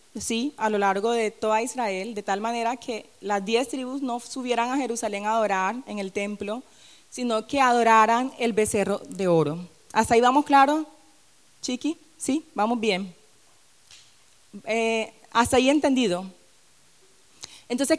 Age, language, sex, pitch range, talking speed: 30-49, English, female, 210-260 Hz, 145 wpm